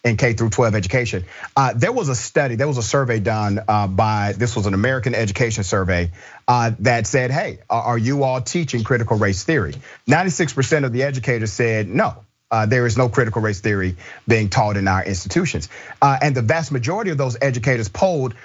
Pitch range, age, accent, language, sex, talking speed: 110-145 Hz, 40-59, American, English, male, 175 wpm